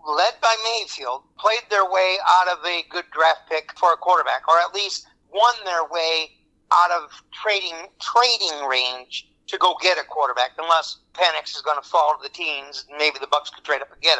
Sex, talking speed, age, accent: male, 205 wpm, 50-69, American